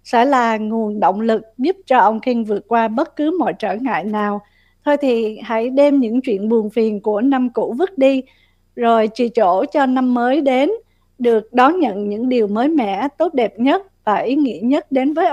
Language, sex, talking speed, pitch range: Vietnamese, female, 210 wpm, 220-270 Hz